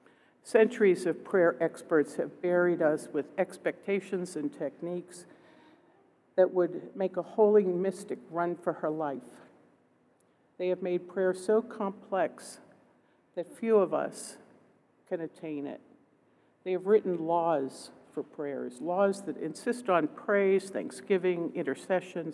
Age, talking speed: 60-79, 125 wpm